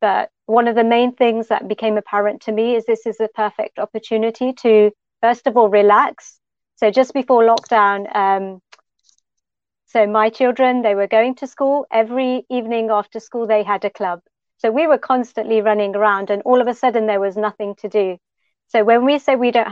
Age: 40-59